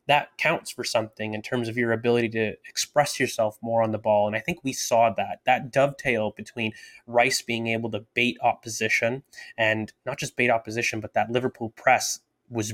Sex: male